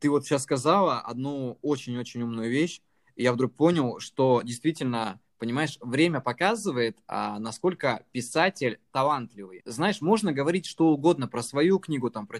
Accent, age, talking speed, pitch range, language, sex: native, 20-39, 150 wpm, 120-155 Hz, Russian, male